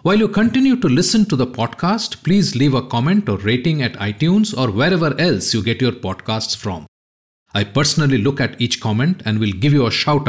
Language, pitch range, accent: English, 115-170 Hz, Indian